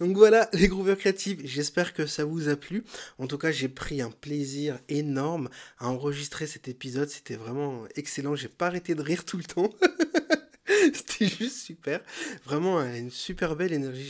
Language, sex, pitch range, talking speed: French, male, 135-160 Hz, 185 wpm